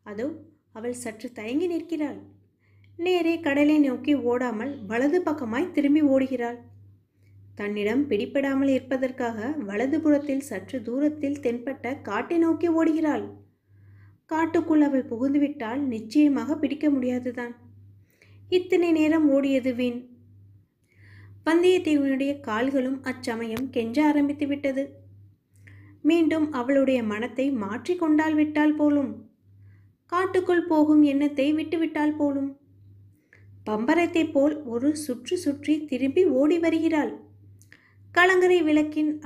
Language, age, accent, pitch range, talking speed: Tamil, 20-39, native, 210-305 Hz, 85 wpm